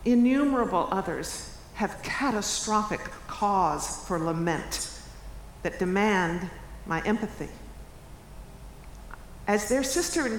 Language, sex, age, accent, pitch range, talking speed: English, female, 50-69, American, 180-240 Hz, 85 wpm